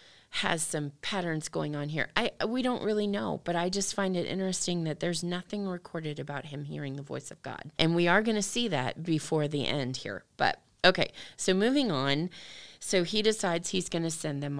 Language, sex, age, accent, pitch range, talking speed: English, female, 30-49, American, 145-175 Hz, 215 wpm